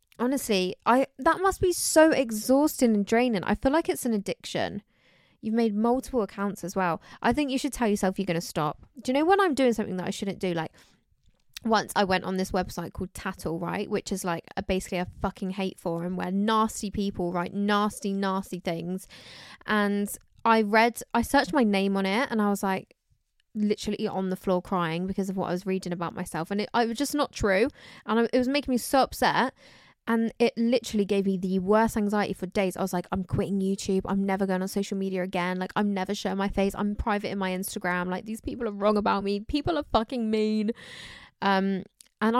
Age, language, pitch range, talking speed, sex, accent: 20-39, English, 185-225 Hz, 220 wpm, female, British